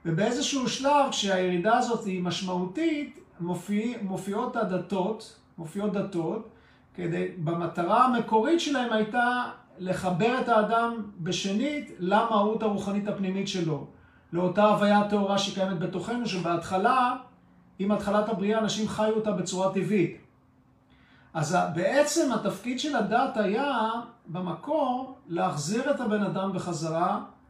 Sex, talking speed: male, 110 wpm